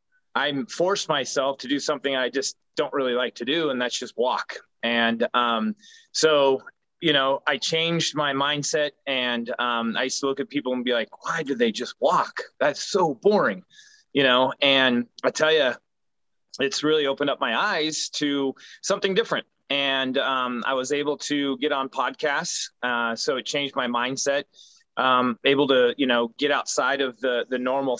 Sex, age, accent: male, 30-49, American